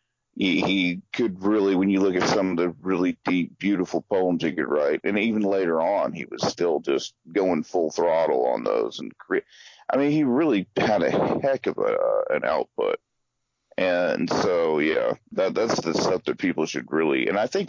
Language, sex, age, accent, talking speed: English, male, 40-59, American, 200 wpm